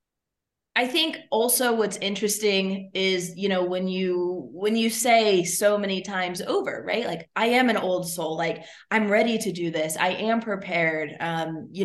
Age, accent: 20-39, American